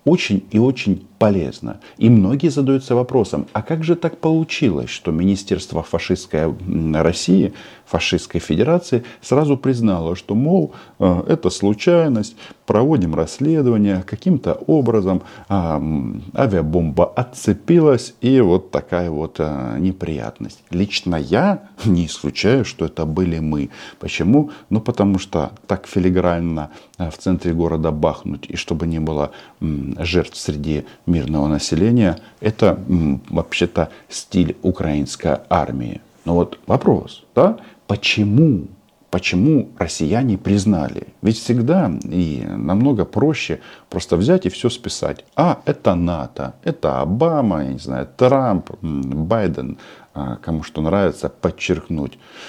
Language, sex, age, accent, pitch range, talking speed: Russian, male, 40-59, native, 80-115 Hz, 115 wpm